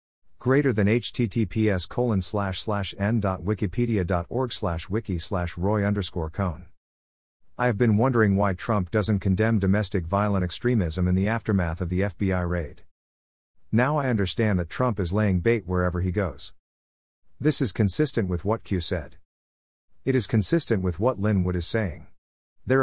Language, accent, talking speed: English, American, 150 wpm